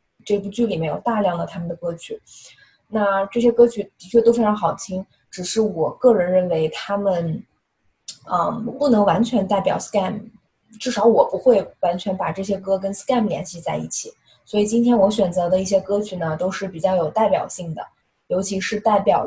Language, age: Chinese, 20-39